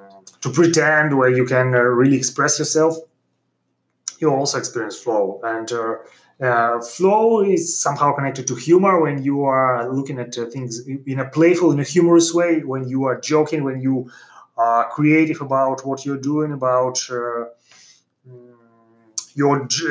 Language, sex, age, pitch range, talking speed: English, male, 30-49, 125-155 Hz, 155 wpm